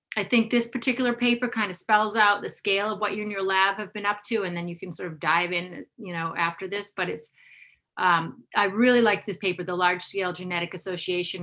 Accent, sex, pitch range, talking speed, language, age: American, female, 175-230 Hz, 230 wpm, English, 30-49